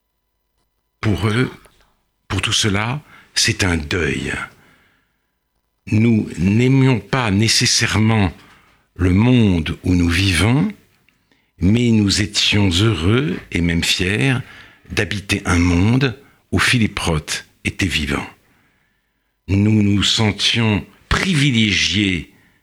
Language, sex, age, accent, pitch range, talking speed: French, male, 60-79, French, 90-115 Hz, 95 wpm